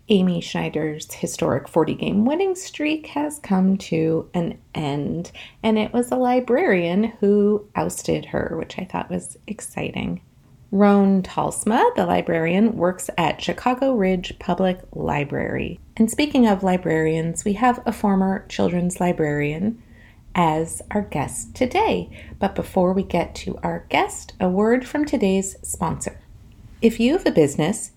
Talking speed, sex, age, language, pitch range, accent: 140 wpm, female, 30-49, English, 170-230 Hz, American